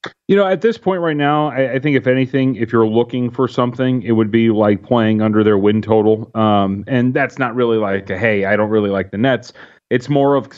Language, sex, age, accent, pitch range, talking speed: English, male, 30-49, American, 110-130 Hz, 240 wpm